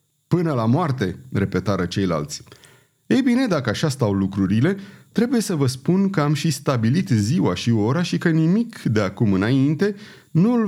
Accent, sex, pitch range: native, male, 110-155 Hz